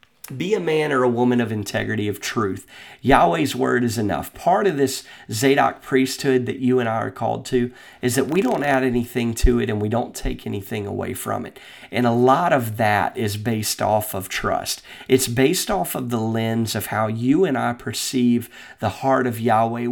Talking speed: 205 wpm